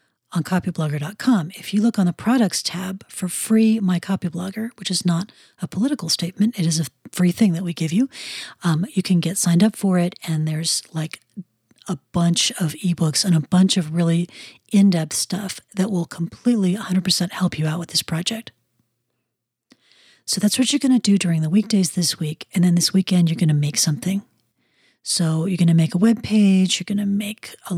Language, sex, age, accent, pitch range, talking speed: English, female, 40-59, American, 170-210 Hz, 205 wpm